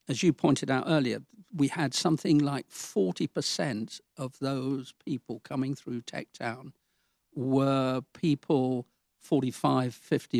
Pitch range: 130-155 Hz